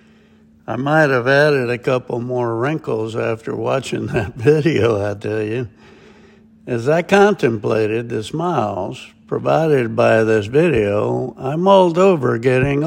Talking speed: 130 wpm